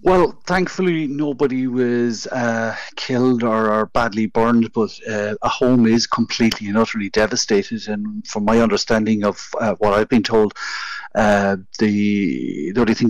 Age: 60-79